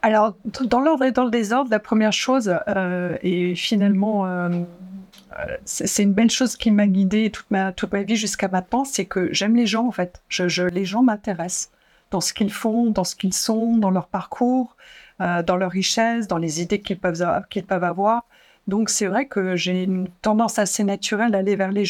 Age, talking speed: 50-69, 210 wpm